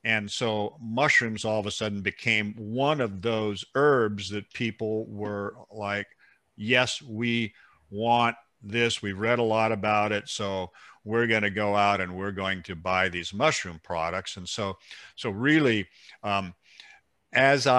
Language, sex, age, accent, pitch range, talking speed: English, male, 50-69, American, 100-125 Hz, 150 wpm